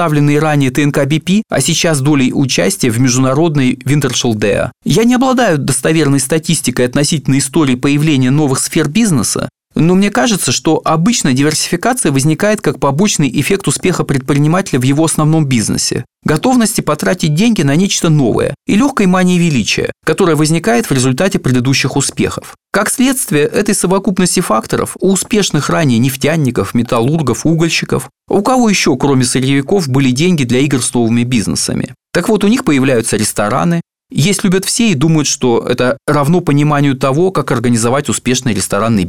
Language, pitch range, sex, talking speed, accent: Russian, 130-185 Hz, male, 145 wpm, native